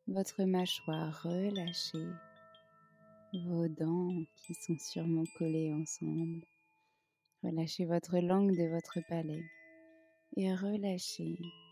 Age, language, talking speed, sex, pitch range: 20-39, French, 90 wpm, female, 160-190 Hz